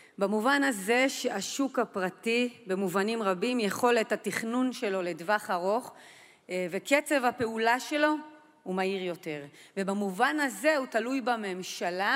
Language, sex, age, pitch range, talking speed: Hebrew, female, 30-49, 200-275 Hz, 110 wpm